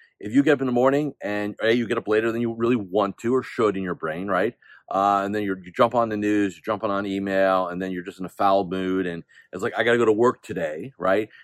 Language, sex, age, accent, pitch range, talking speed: English, male, 40-59, American, 105-135 Hz, 295 wpm